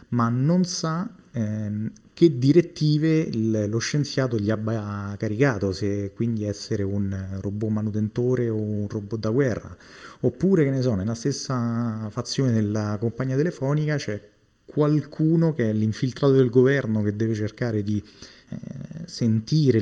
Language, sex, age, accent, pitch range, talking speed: Italian, male, 30-49, native, 100-130 Hz, 135 wpm